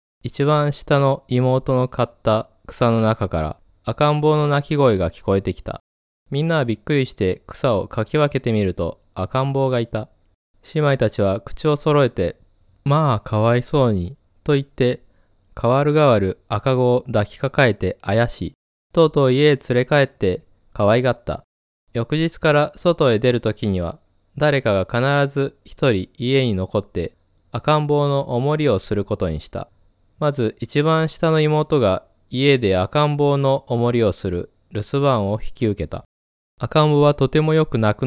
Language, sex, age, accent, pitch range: Japanese, male, 20-39, native, 100-145 Hz